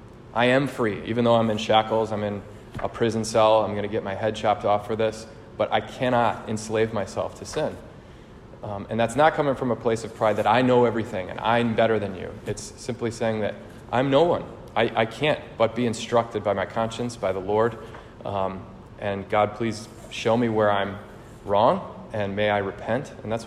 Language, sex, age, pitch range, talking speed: English, male, 30-49, 105-115 Hz, 210 wpm